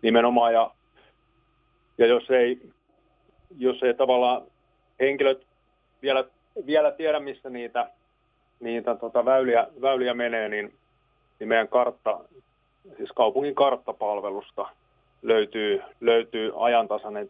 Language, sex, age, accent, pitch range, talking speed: Finnish, male, 30-49, native, 110-135 Hz, 95 wpm